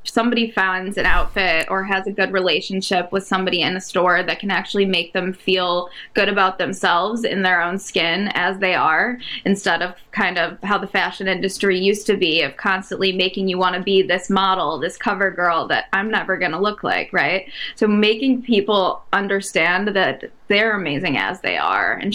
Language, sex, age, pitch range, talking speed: English, female, 10-29, 185-205 Hz, 195 wpm